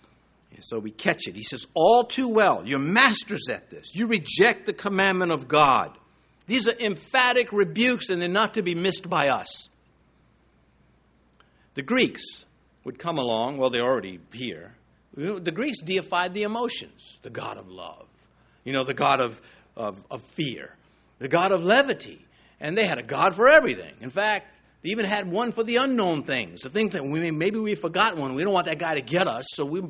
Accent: American